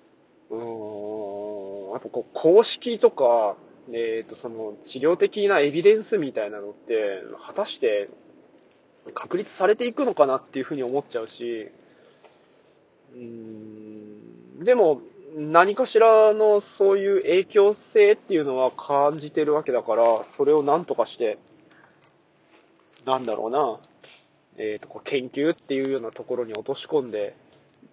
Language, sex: Japanese, male